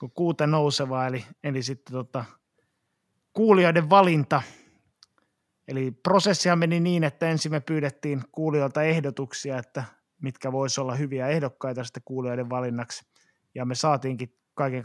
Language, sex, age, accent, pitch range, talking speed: Finnish, male, 20-39, native, 130-155 Hz, 120 wpm